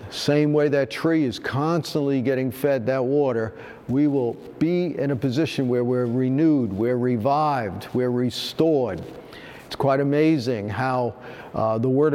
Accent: American